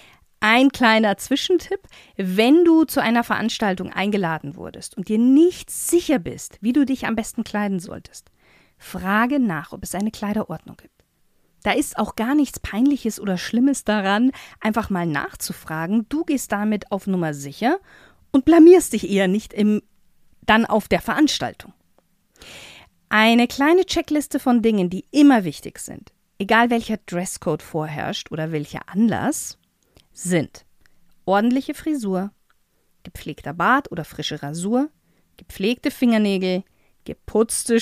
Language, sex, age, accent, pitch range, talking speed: German, female, 40-59, German, 190-265 Hz, 130 wpm